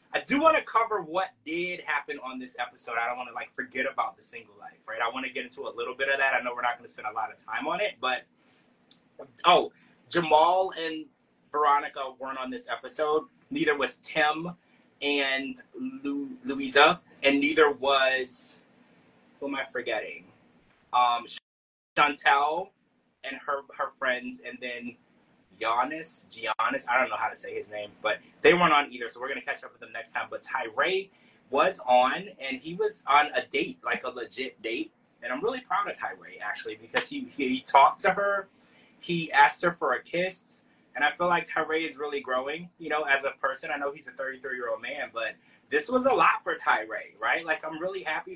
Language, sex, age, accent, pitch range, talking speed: English, male, 30-49, American, 135-190 Hz, 205 wpm